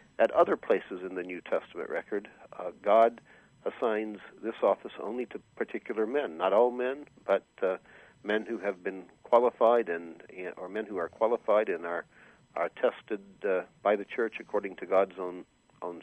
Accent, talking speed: American, 170 wpm